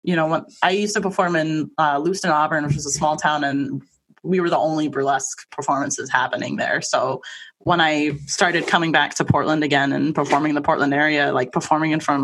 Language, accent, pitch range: English, American, 150-185 Hz